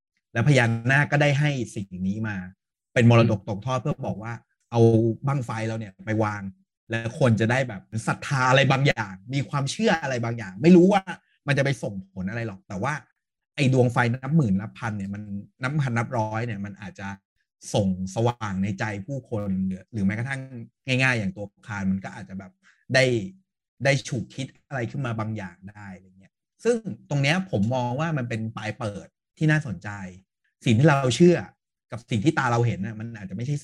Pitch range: 105-145 Hz